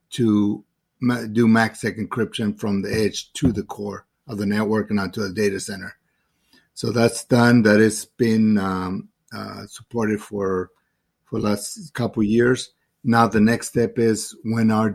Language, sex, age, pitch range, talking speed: English, male, 50-69, 100-115 Hz, 165 wpm